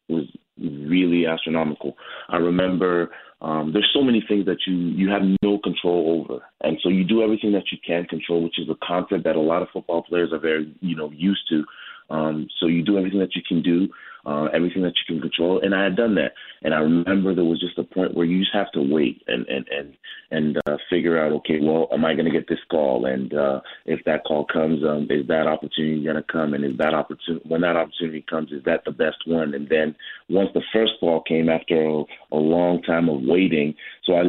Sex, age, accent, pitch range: male, 30-49, American, 80-95 Hz